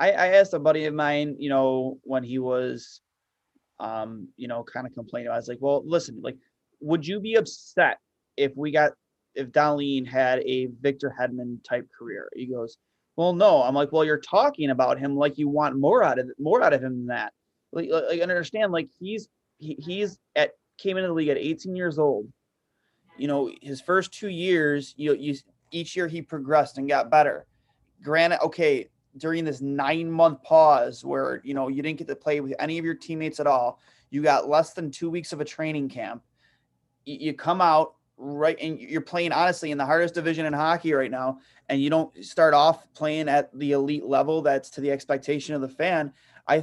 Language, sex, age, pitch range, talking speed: English, male, 30-49, 135-160 Hz, 200 wpm